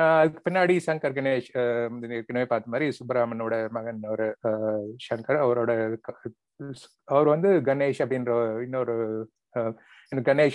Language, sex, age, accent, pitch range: Tamil, male, 30-49, native, 115-140 Hz